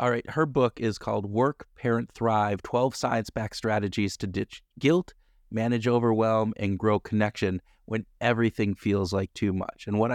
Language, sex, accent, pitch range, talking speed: English, male, American, 100-120 Hz, 170 wpm